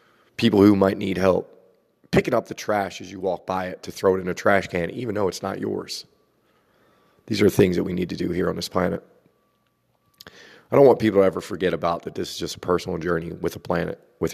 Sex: male